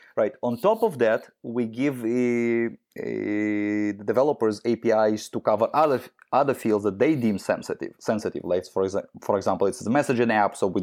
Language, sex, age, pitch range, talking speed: English, male, 20-39, 95-115 Hz, 185 wpm